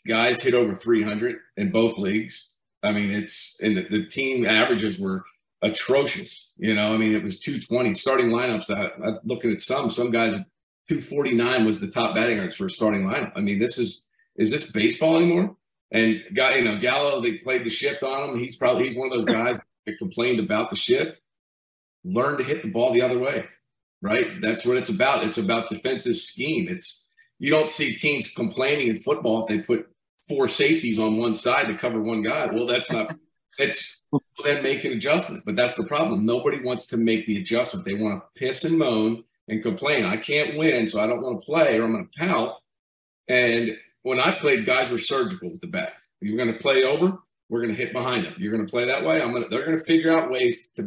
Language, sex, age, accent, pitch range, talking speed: English, male, 40-59, American, 110-165 Hz, 225 wpm